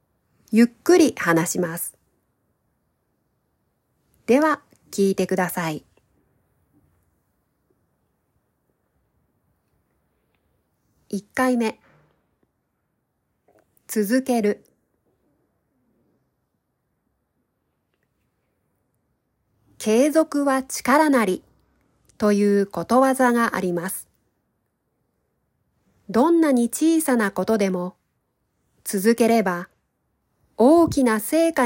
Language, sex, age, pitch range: Japanese, female, 40-59, 205-275 Hz